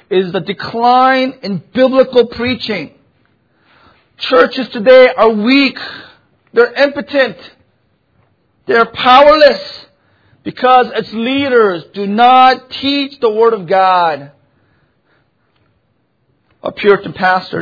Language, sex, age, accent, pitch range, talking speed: English, male, 40-59, American, 195-255 Hz, 90 wpm